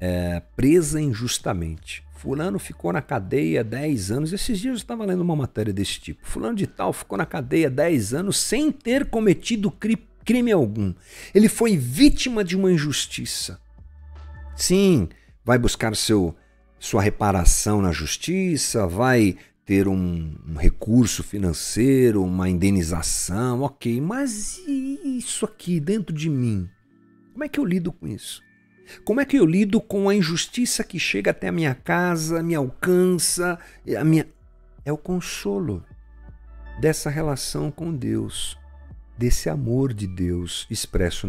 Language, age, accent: Portuguese, 50-69, Brazilian